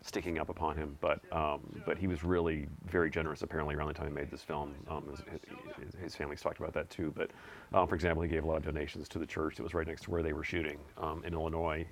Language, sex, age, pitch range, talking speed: English, male, 40-59, 75-85 Hz, 265 wpm